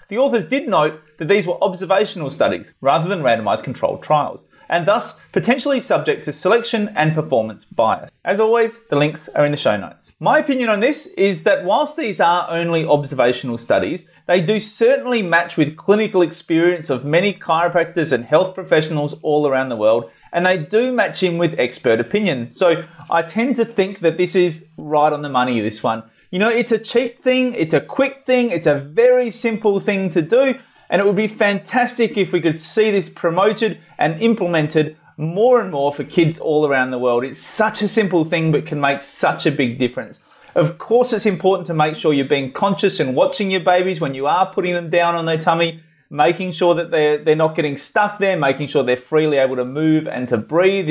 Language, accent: English, Australian